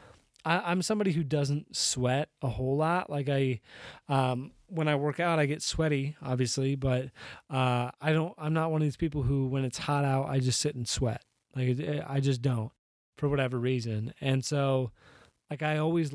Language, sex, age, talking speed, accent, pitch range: English, male, 20-39, 190 wpm, American, 130-155 Hz